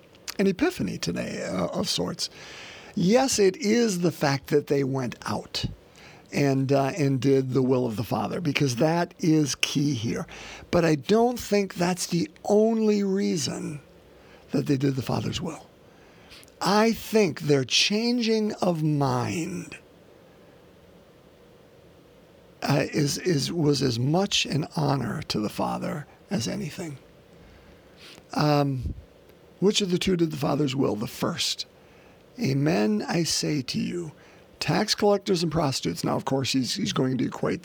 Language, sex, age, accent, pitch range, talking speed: English, male, 50-69, American, 140-195 Hz, 145 wpm